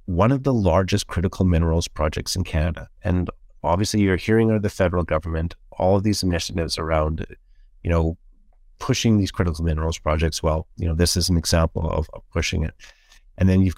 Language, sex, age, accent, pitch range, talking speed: English, male, 30-49, American, 85-105 Hz, 185 wpm